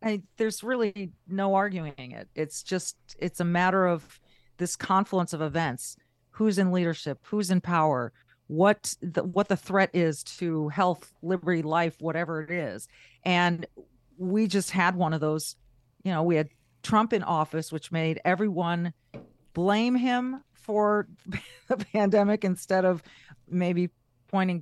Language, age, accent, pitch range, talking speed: English, 40-59, American, 160-205 Hz, 145 wpm